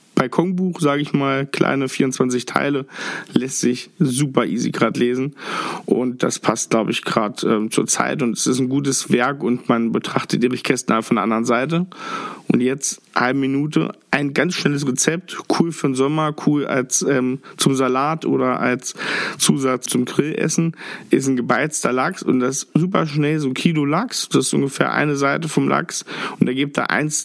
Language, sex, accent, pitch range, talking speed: German, male, German, 125-160 Hz, 185 wpm